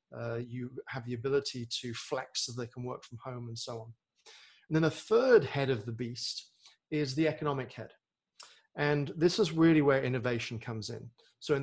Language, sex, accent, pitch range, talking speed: English, male, British, 125-155 Hz, 195 wpm